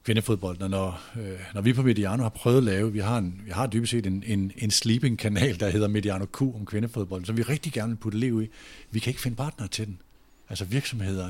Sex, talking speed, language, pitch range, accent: male, 230 wpm, Danish, 105-130 Hz, native